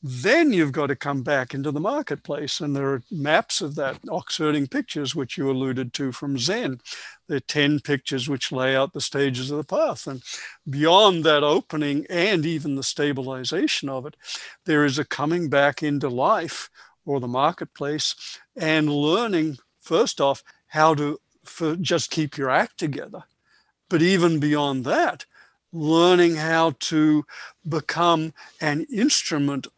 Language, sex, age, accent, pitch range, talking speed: English, male, 60-79, American, 140-155 Hz, 155 wpm